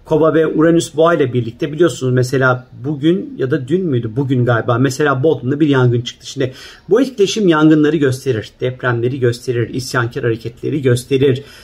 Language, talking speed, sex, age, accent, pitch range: Turkish, 155 wpm, male, 40-59, native, 130-165 Hz